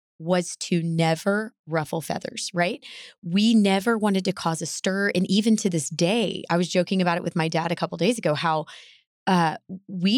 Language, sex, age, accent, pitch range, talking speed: English, female, 20-39, American, 165-210 Hz, 200 wpm